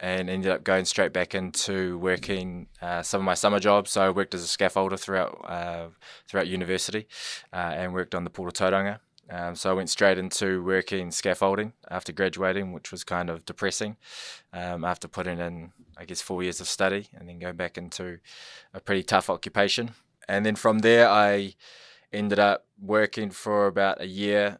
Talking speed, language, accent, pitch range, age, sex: 190 wpm, English, Australian, 90-100 Hz, 20-39, male